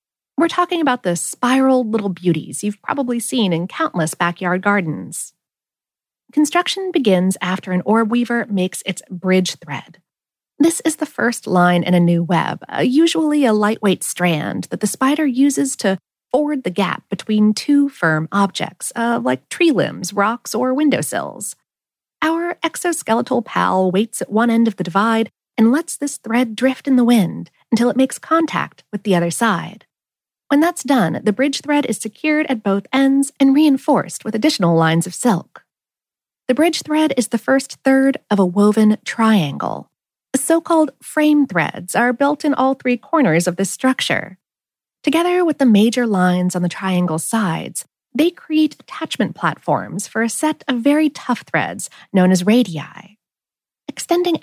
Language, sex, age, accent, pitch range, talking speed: English, female, 40-59, American, 190-285 Hz, 165 wpm